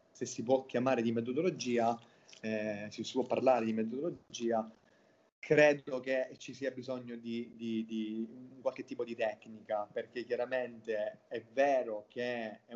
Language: Italian